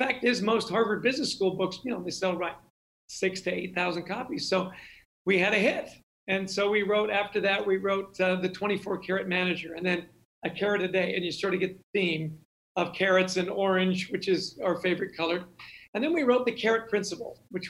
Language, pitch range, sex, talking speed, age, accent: English, 175-205 Hz, male, 225 wpm, 50-69, American